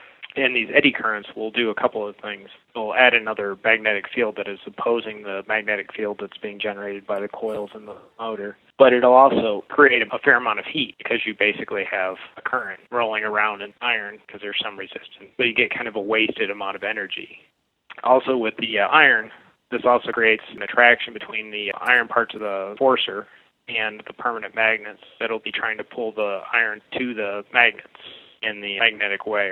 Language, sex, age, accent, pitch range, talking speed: English, male, 20-39, American, 100-115 Hz, 195 wpm